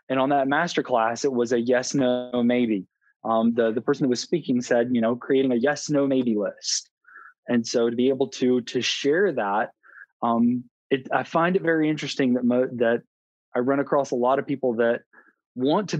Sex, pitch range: male, 125-150 Hz